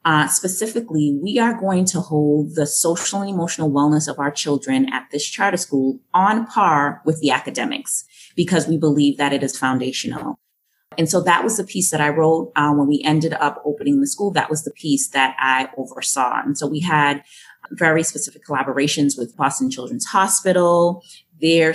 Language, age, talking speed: English, 30-49, 185 wpm